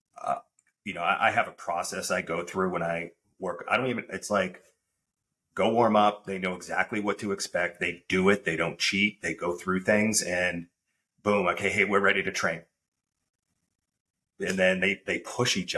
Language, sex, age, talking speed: English, male, 30-49, 195 wpm